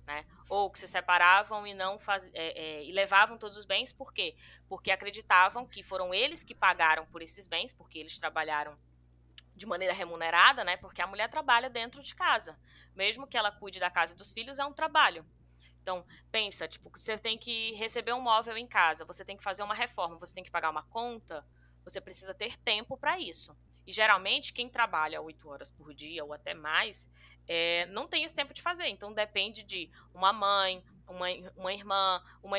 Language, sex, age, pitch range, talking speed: Portuguese, female, 20-39, 175-235 Hz, 195 wpm